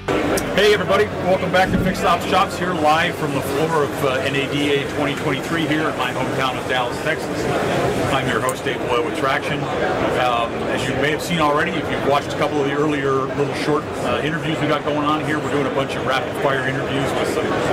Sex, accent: male, American